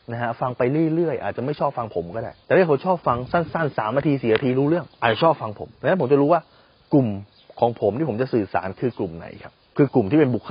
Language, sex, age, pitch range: Thai, male, 30-49, 110-145 Hz